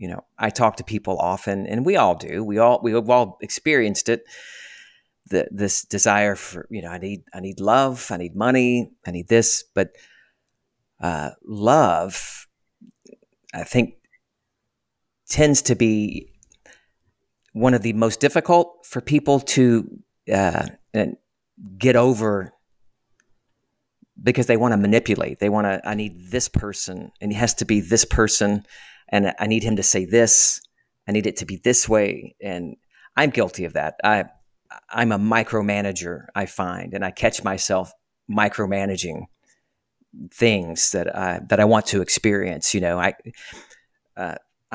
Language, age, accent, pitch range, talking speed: English, 40-59, American, 100-120 Hz, 155 wpm